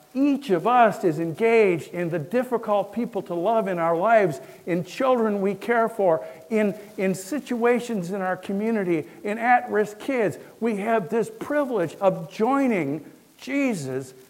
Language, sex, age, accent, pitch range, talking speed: English, male, 60-79, American, 160-215 Hz, 145 wpm